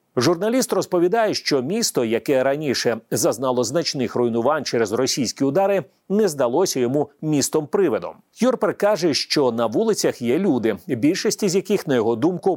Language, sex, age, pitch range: Ukrainian, male, 40-59, 125-195 Hz